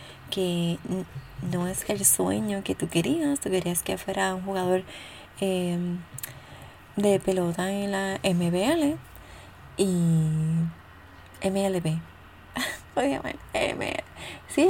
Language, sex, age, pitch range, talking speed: Spanish, female, 20-39, 125-210 Hz, 95 wpm